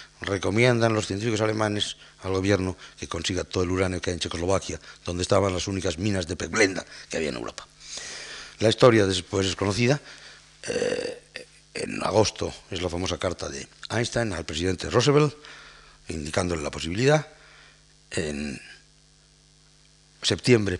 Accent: Spanish